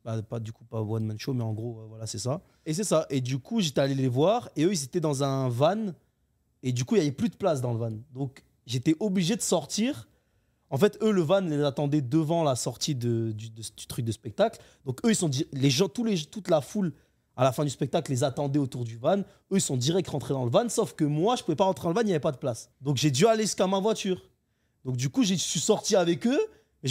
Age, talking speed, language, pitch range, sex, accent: 30-49, 290 wpm, French, 130-185 Hz, male, French